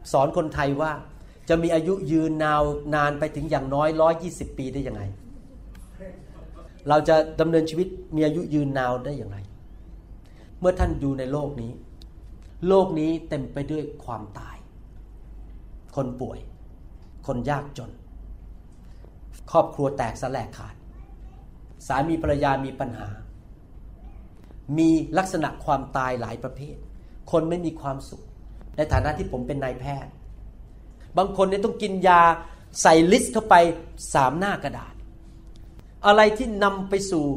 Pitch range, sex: 130-205 Hz, male